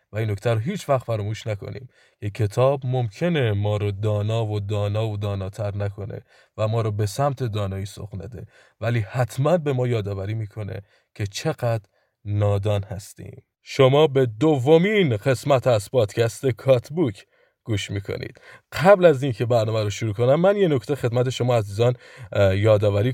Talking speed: 150 wpm